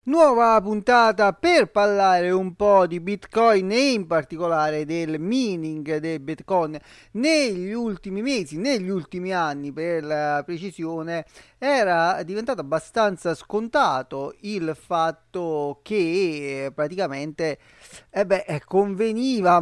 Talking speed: 110 wpm